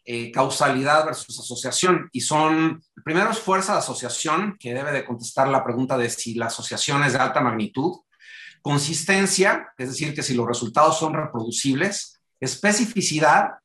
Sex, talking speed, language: male, 155 wpm, Spanish